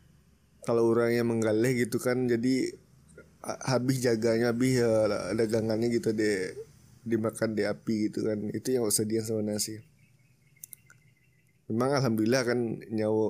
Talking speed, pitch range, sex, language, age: 120 wpm, 110-125 Hz, male, Indonesian, 20-39